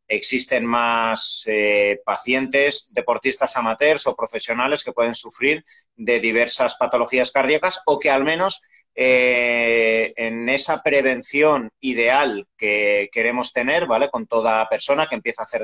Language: Spanish